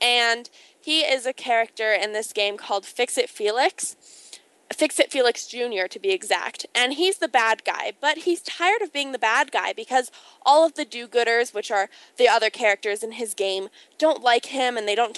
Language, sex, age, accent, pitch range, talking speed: English, female, 10-29, American, 220-290 Hz, 195 wpm